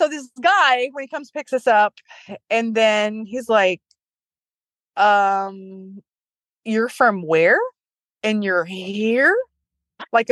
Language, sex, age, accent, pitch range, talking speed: English, female, 30-49, American, 185-240 Hz, 120 wpm